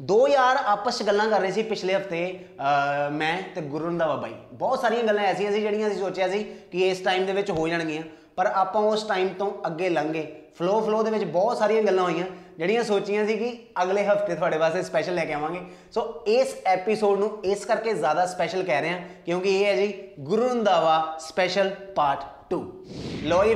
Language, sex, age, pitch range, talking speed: Punjabi, male, 20-39, 150-205 Hz, 180 wpm